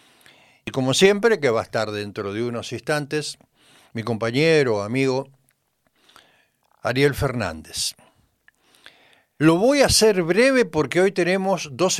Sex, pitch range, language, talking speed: male, 115-165 Hz, Spanish, 125 wpm